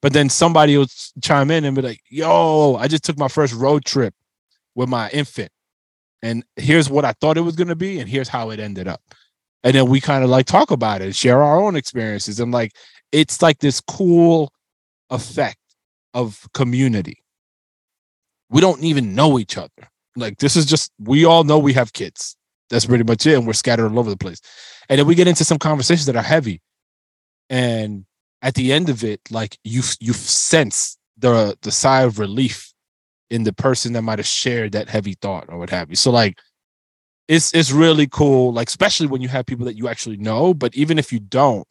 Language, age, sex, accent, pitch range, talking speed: English, 20-39, male, American, 110-145 Hz, 210 wpm